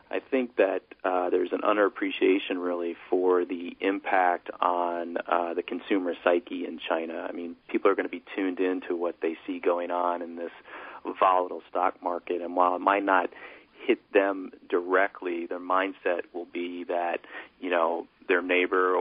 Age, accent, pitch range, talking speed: 40-59, American, 85-100 Hz, 170 wpm